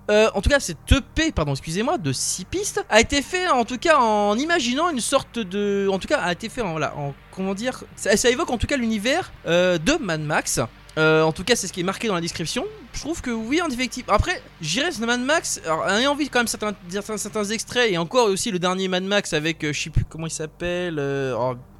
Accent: French